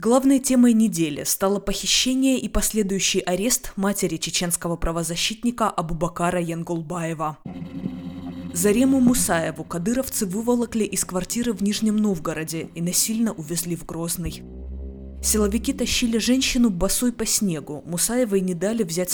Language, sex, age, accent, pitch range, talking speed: Russian, female, 20-39, native, 165-220 Hz, 115 wpm